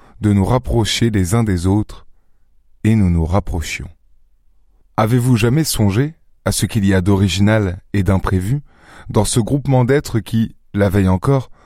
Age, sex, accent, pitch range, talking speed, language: 20-39, male, French, 95-120 Hz, 155 wpm, French